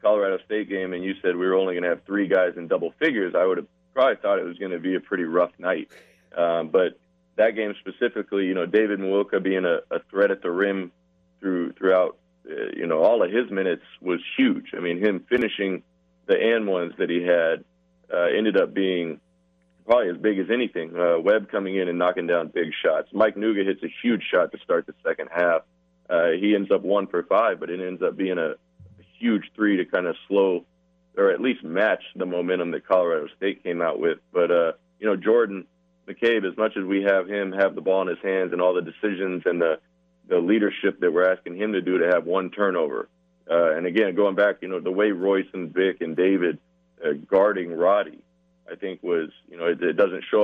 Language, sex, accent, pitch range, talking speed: English, male, American, 85-105 Hz, 225 wpm